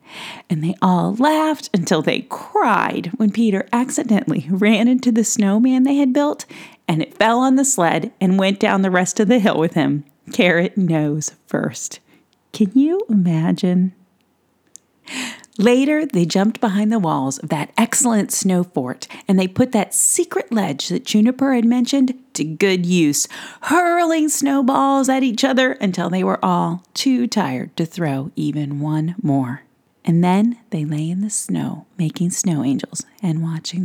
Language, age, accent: English, 40-59, American